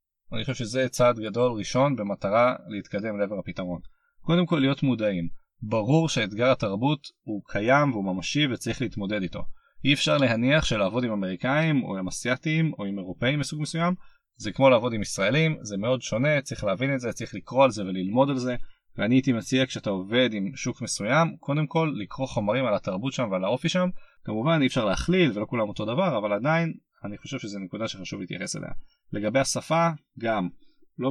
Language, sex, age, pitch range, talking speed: Hebrew, male, 30-49, 110-145 Hz, 185 wpm